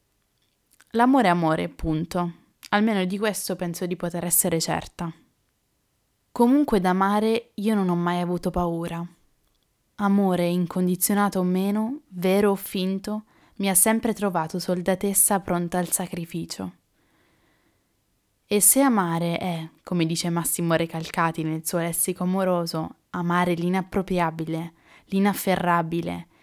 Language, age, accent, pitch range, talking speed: Italian, 20-39, native, 170-200 Hz, 115 wpm